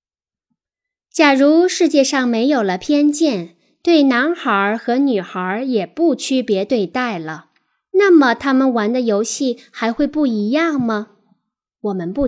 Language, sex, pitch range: Chinese, female, 210-295 Hz